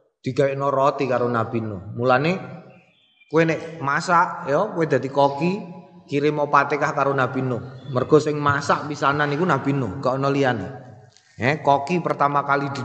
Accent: native